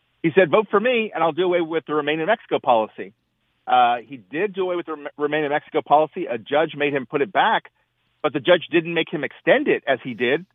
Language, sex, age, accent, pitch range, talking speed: English, male, 40-59, American, 130-175 Hz, 250 wpm